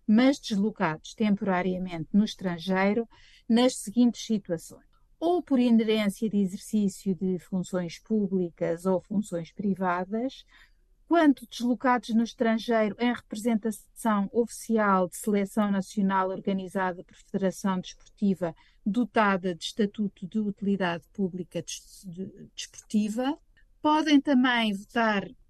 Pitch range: 185-225 Hz